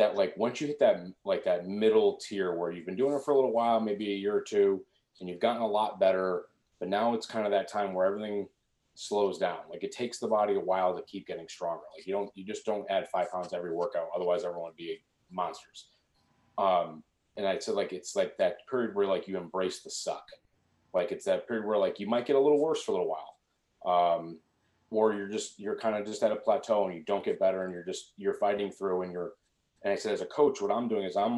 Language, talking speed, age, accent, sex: English, 260 wpm, 30-49, American, male